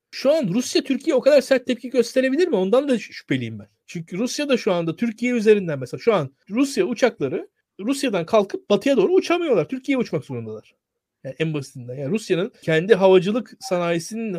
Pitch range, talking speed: 175-235 Hz, 175 wpm